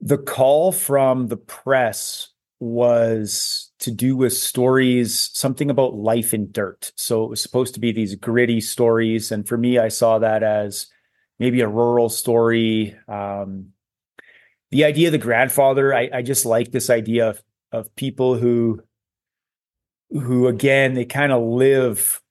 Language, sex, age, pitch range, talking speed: English, male, 30-49, 110-130 Hz, 155 wpm